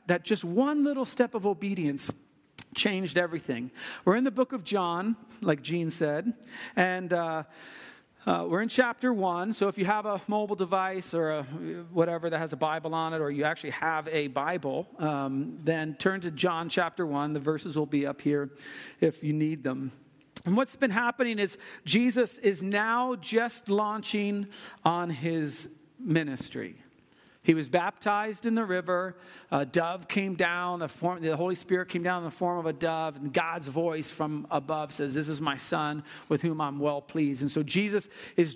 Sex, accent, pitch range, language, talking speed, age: male, American, 155-210 Hz, English, 180 wpm, 50-69